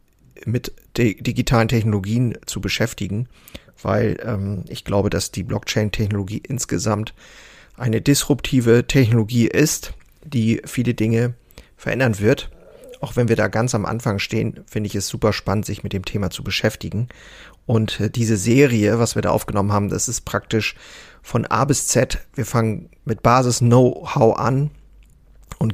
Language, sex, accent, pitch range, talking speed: German, male, German, 105-125 Hz, 145 wpm